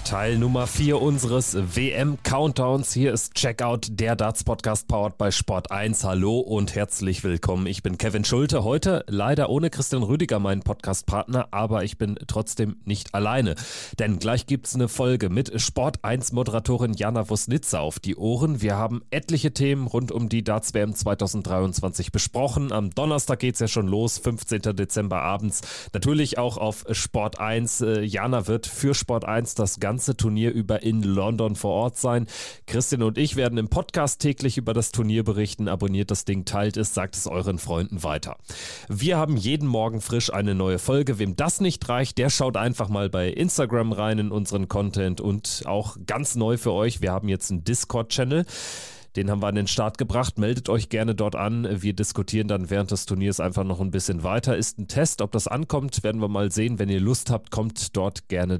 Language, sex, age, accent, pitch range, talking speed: German, male, 30-49, German, 100-125 Hz, 185 wpm